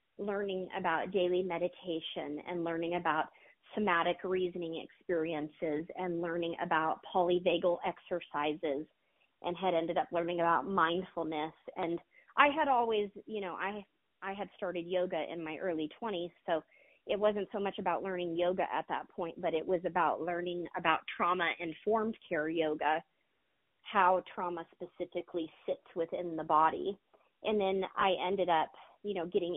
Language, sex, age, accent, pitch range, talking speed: English, female, 30-49, American, 170-200 Hz, 145 wpm